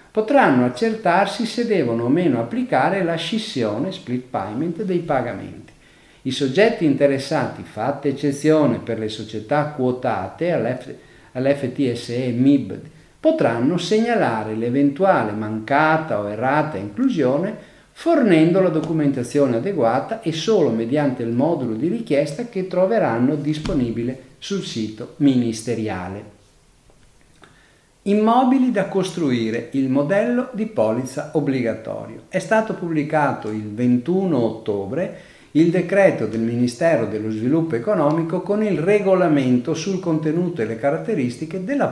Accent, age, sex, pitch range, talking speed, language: native, 50-69, male, 120-190 Hz, 115 wpm, Italian